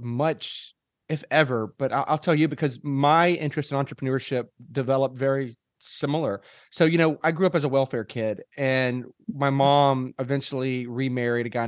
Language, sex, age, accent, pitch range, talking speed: English, male, 30-49, American, 115-145 Hz, 165 wpm